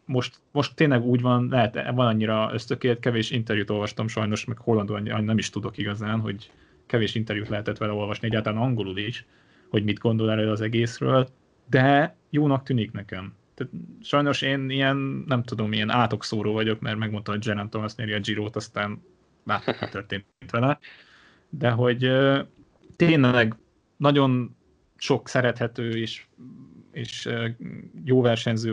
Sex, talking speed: male, 140 wpm